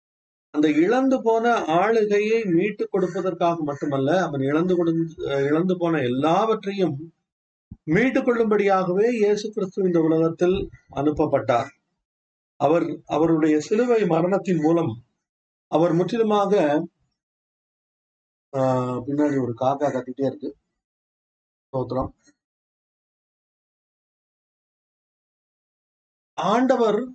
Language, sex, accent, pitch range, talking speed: Tamil, male, native, 150-205 Hz, 75 wpm